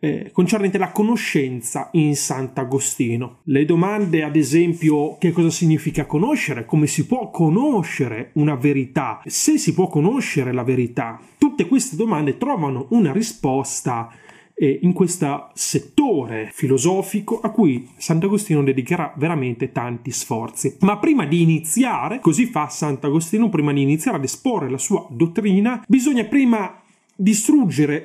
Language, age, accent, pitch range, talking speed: Italian, 30-49, native, 145-225 Hz, 135 wpm